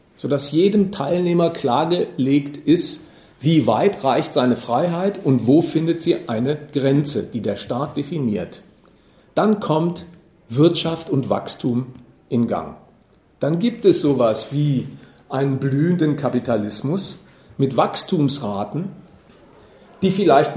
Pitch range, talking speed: 130-170 Hz, 115 wpm